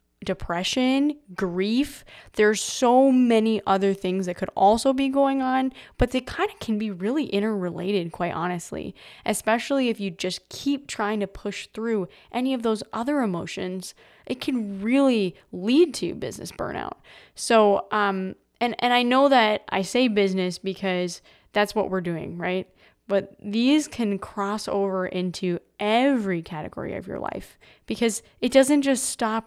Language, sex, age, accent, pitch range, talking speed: English, female, 20-39, American, 185-230 Hz, 155 wpm